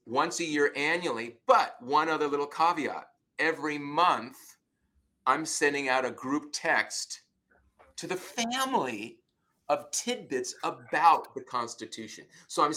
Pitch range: 125-160 Hz